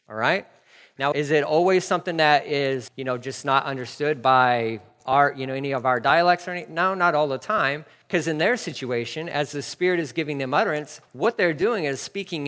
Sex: male